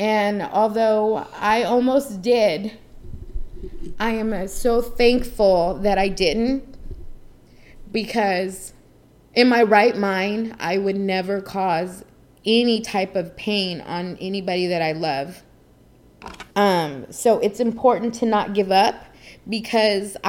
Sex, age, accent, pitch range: female, 20-39, American, 190-230 Hz